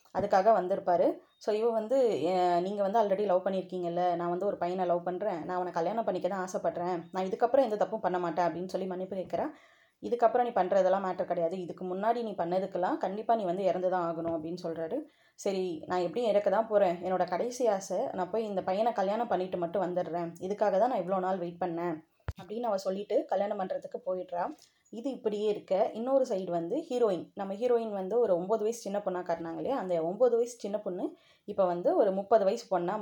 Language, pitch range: Tamil, 180-220 Hz